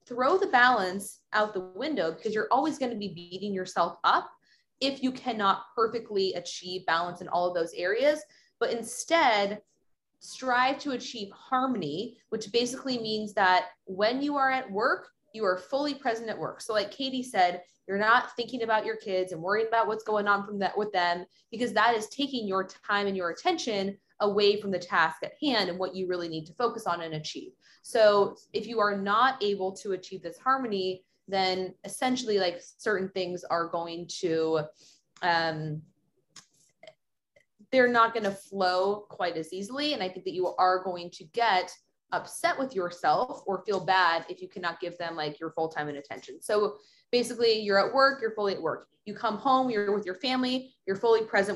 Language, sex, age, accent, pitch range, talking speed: English, female, 20-39, American, 185-235 Hz, 190 wpm